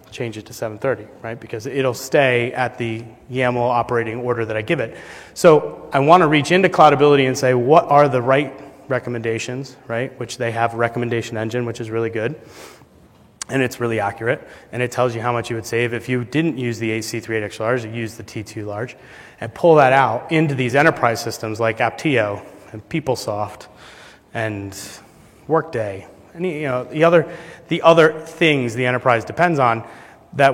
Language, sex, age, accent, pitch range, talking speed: English, male, 30-49, American, 115-140 Hz, 180 wpm